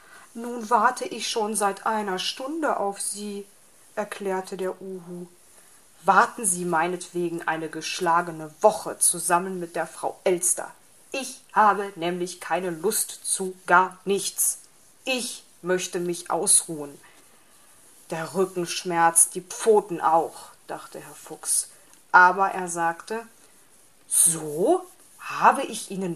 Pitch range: 175-215 Hz